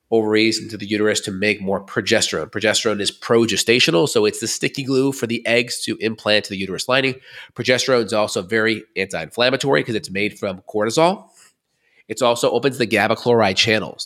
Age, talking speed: 30-49, 180 wpm